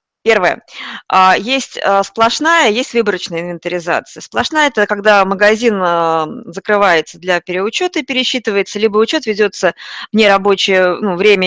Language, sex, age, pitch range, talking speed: Russian, female, 20-39, 185-230 Hz, 115 wpm